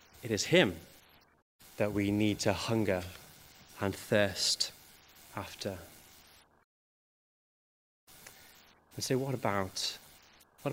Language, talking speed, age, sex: English, 90 wpm, 20-39, male